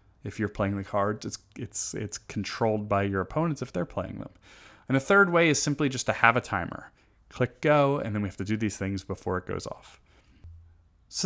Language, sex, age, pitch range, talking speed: English, male, 30-49, 100-135 Hz, 230 wpm